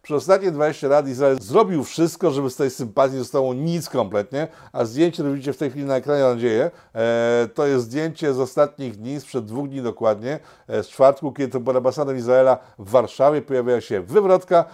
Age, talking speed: 50-69, 200 wpm